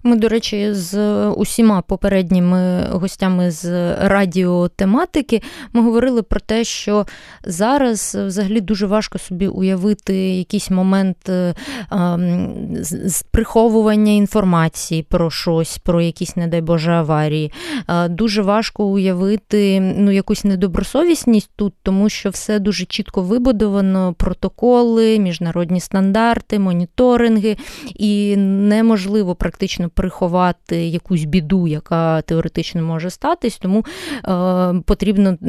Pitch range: 175-210 Hz